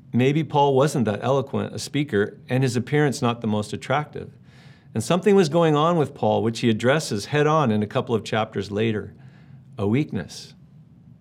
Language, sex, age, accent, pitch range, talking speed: English, male, 50-69, American, 115-155 Hz, 180 wpm